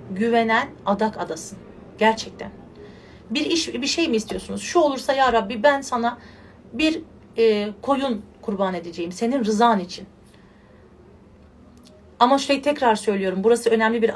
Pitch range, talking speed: 205-255 Hz, 130 wpm